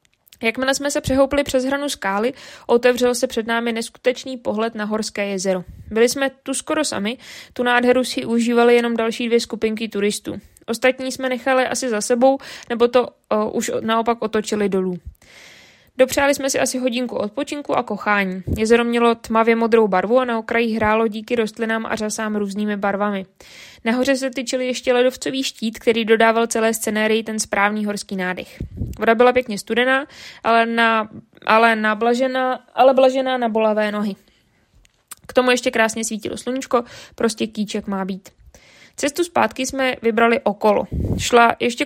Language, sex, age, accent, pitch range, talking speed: Czech, female, 20-39, native, 215-250 Hz, 160 wpm